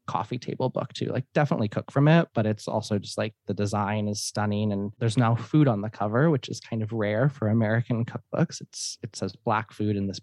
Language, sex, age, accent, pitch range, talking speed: English, male, 20-39, American, 105-125 Hz, 235 wpm